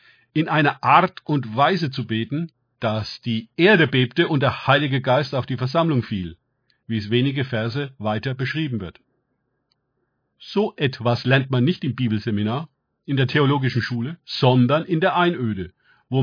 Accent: German